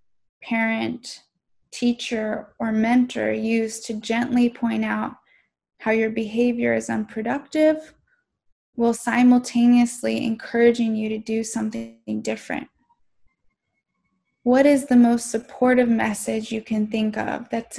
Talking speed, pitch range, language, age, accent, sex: 110 wpm, 215-245 Hz, English, 10-29, American, female